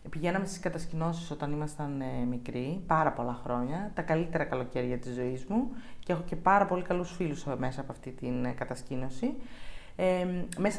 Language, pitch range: Greek, 160-205 Hz